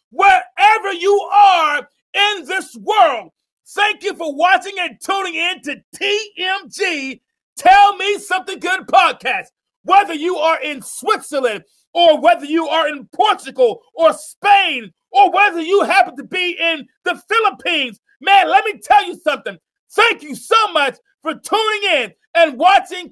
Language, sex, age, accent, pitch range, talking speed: English, male, 40-59, American, 295-390 Hz, 150 wpm